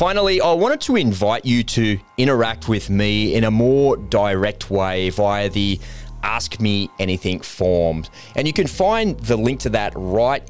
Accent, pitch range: Australian, 95-120 Hz